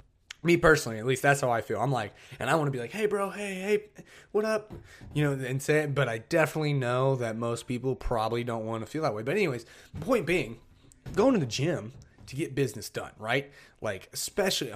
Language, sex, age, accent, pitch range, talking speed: English, male, 30-49, American, 120-155 Hz, 230 wpm